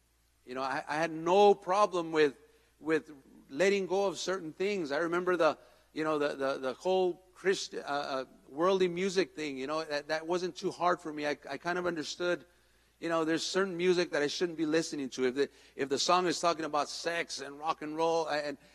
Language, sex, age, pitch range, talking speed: English, male, 50-69, 150-185 Hz, 215 wpm